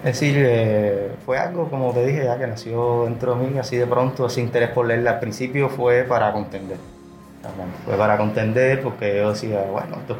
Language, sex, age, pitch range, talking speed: Spanish, male, 20-39, 105-120 Hz, 200 wpm